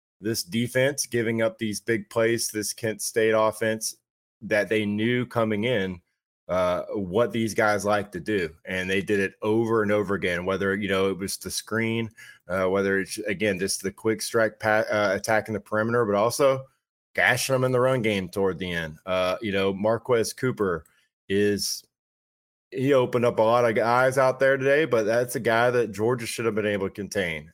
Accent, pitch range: American, 100-115 Hz